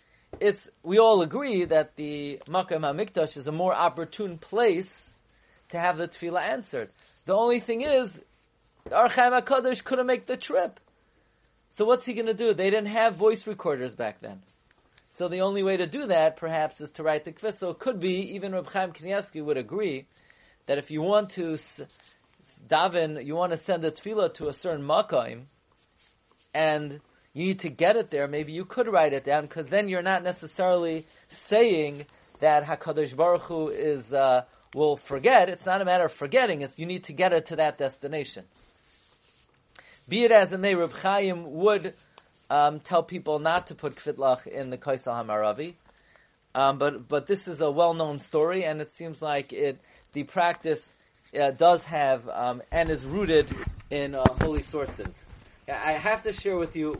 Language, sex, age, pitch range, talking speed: English, male, 40-59, 150-190 Hz, 180 wpm